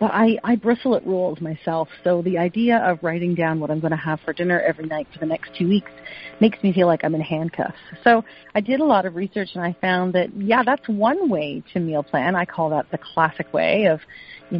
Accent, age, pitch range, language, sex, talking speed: American, 40-59, 175-240 Hz, English, female, 245 wpm